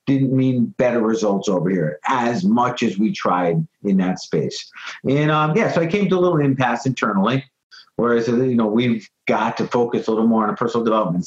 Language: English